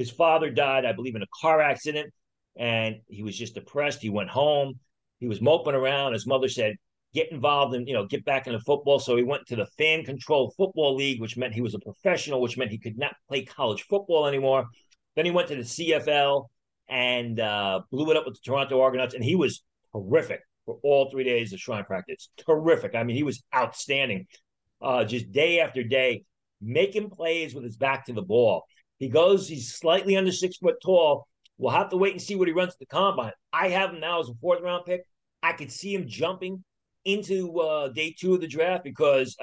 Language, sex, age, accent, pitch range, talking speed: English, male, 40-59, American, 125-165 Hz, 220 wpm